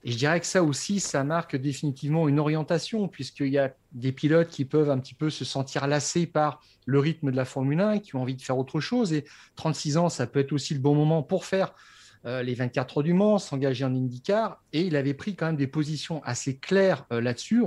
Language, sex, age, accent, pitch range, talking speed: French, male, 40-59, French, 130-170 Hz, 235 wpm